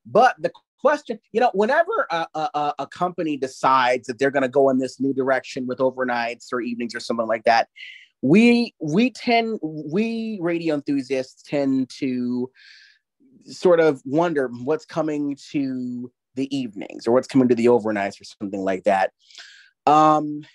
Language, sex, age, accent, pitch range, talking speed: English, male, 30-49, American, 120-160 Hz, 160 wpm